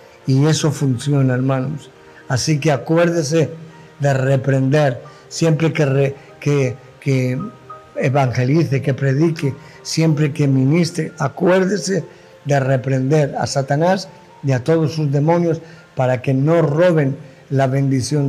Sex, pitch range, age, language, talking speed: male, 135-160 Hz, 50-69, Spanish, 115 wpm